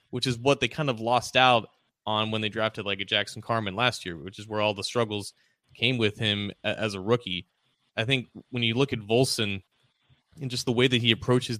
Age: 20-39